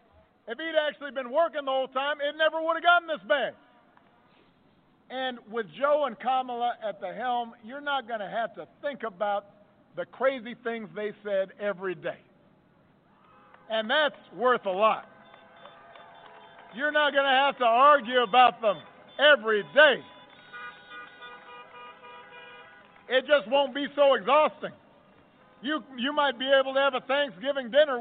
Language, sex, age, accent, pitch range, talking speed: English, male, 50-69, American, 245-290 Hz, 145 wpm